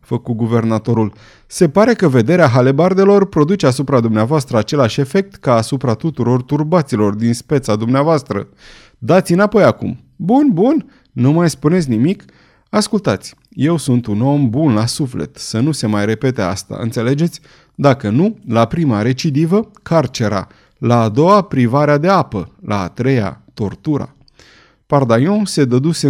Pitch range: 115-155 Hz